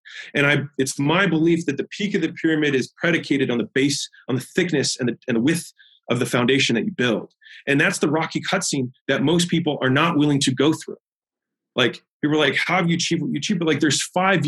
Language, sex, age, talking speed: English, male, 30-49, 245 wpm